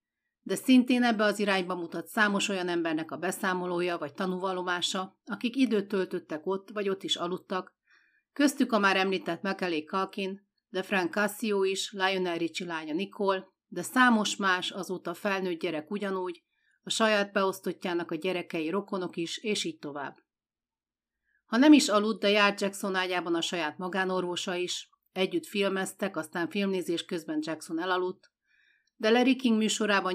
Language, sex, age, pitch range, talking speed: Hungarian, female, 40-59, 175-210 Hz, 150 wpm